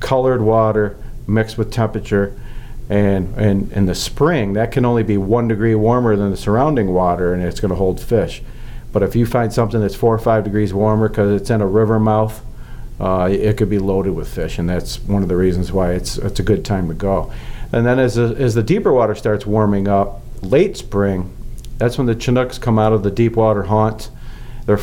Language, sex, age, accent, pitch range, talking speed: English, male, 50-69, American, 100-115 Hz, 220 wpm